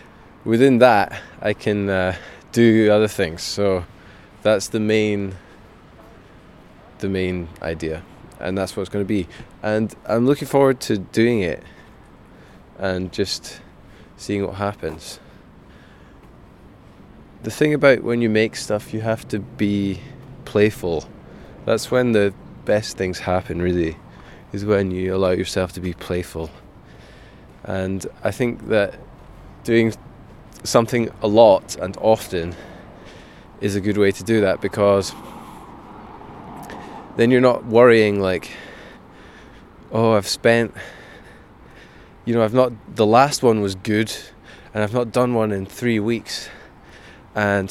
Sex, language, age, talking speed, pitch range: male, English, 20-39, 130 wpm, 95-115 Hz